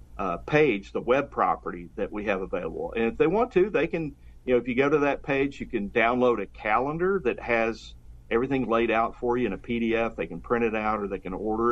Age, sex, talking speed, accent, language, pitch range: 50-69, male, 245 wpm, American, English, 100-125 Hz